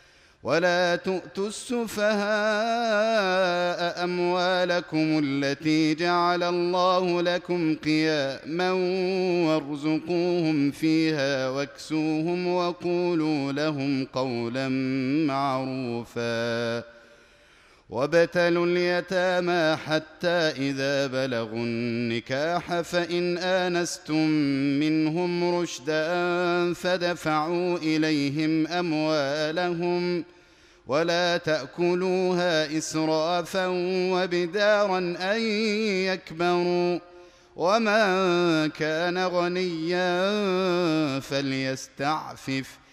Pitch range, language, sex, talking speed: 140-175 Hz, Arabic, male, 55 wpm